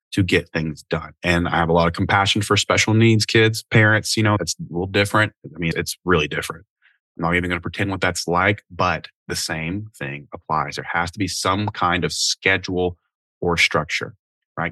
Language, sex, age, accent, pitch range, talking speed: English, male, 20-39, American, 90-120 Hz, 210 wpm